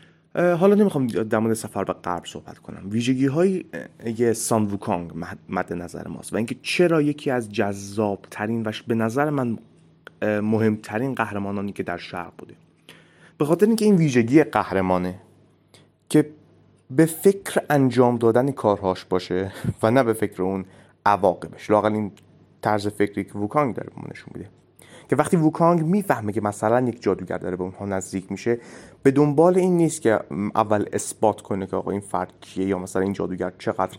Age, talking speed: 30-49, 165 wpm